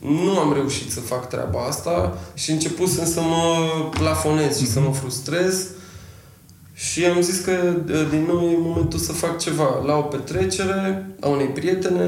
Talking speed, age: 165 wpm, 20-39